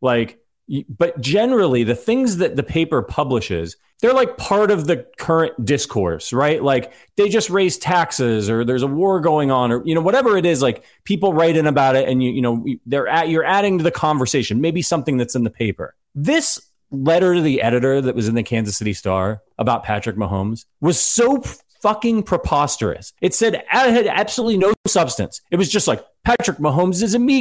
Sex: male